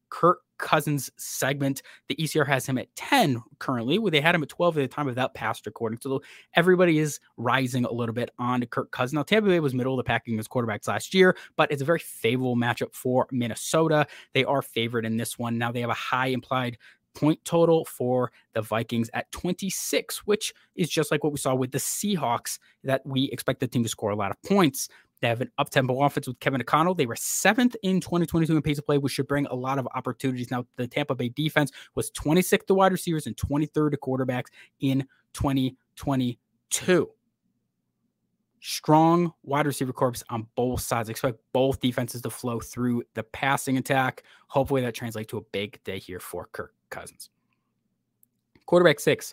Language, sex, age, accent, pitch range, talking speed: English, male, 20-39, American, 120-150 Hz, 195 wpm